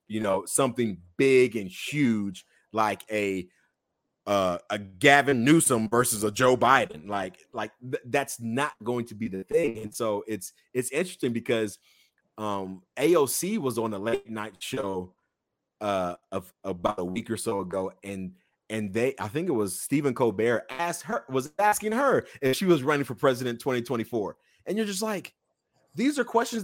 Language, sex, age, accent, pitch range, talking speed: English, male, 30-49, American, 110-175 Hz, 170 wpm